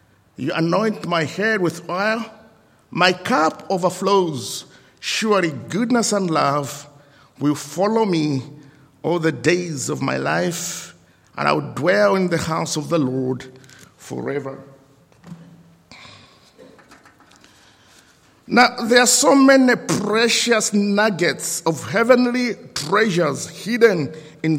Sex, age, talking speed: male, 50-69, 110 wpm